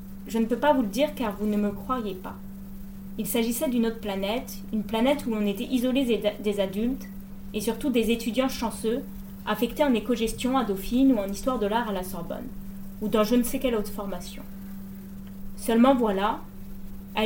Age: 20-39